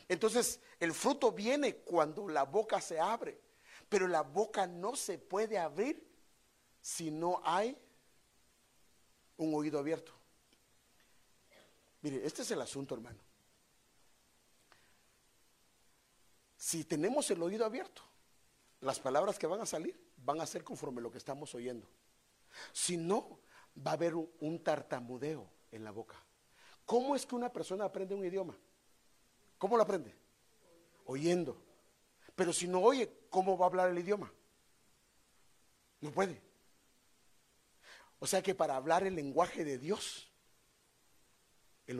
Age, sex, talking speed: 50-69, male, 130 wpm